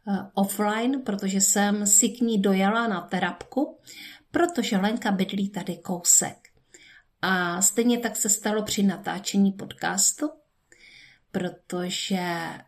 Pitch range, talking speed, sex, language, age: 180-225 Hz, 110 wpm, female, Czech, 50-69